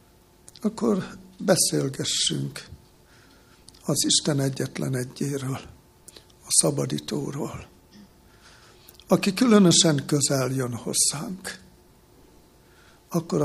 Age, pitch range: 60-79, 135-185 Hz